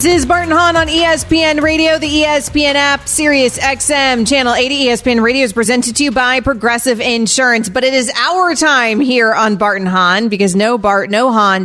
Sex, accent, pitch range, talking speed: female, American, 220-275 Hz, 190 wpm